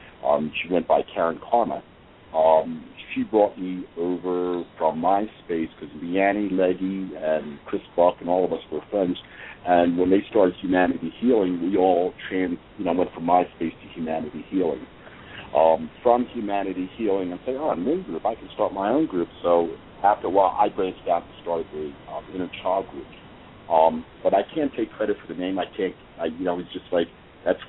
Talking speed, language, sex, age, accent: 180 wpm, English, male, 50-69, American